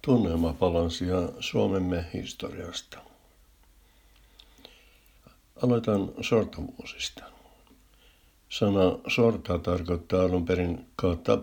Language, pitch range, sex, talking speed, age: Finnish, 85-95 Hz, male, 65 wpm, 60-79